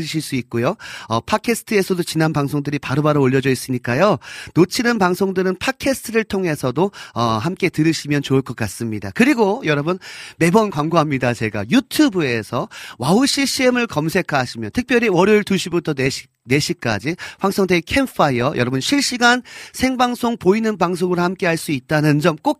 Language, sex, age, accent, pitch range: Korean, male, 40-59, native, 140-225 Hz